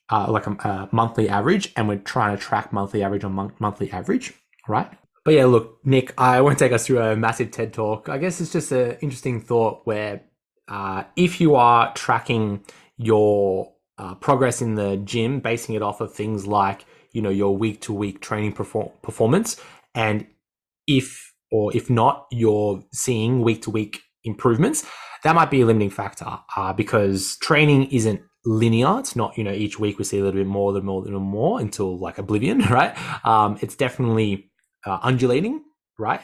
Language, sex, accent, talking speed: English, male, Australian, 175 wpm